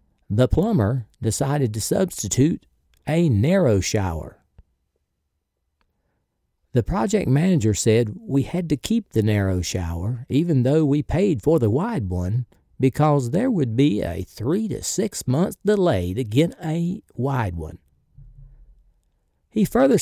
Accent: American